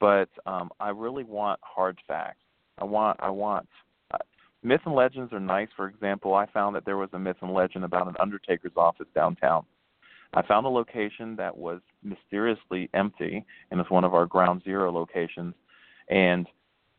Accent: American